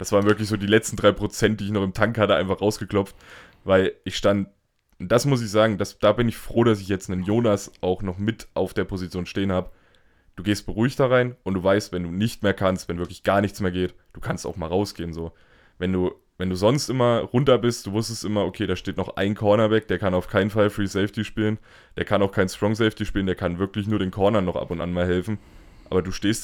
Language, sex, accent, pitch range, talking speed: German, male, German, 95-110 Hz, 255 wpm